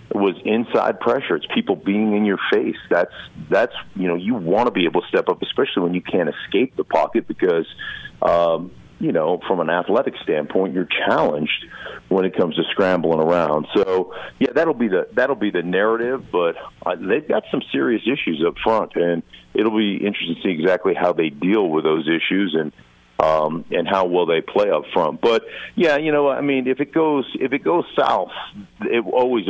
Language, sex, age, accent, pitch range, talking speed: English, male, 50-69, American, 85-115 Hz, 200 wpm